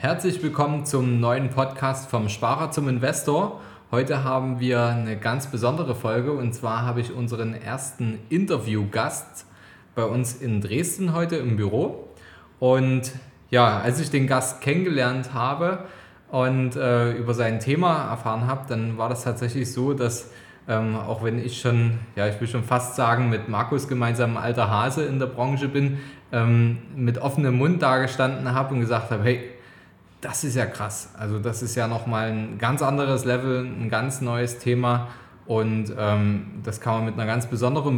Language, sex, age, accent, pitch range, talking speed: German, male, 20-39, German, 115-135 Hz, 170 wpm